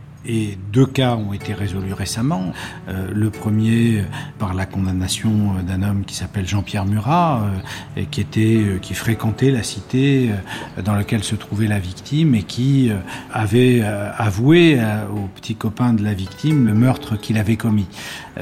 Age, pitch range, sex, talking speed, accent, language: 50-69, 100-115 Hz, male, 145 wpm, French, French